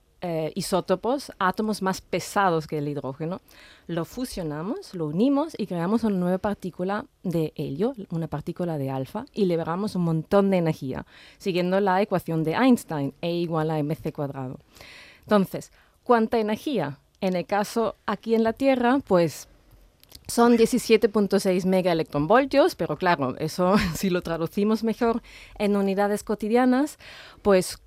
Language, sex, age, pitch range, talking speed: Spanish, female, 30-49, 170-235 Hz, 140 wpm